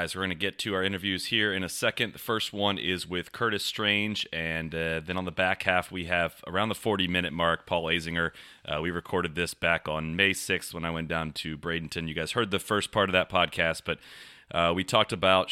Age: 30-49